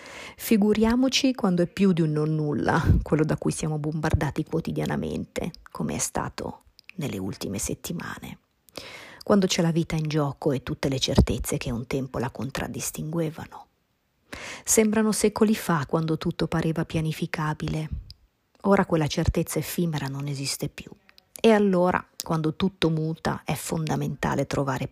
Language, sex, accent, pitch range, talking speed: Italian, female, native, 140-175 Hz, 135 wpm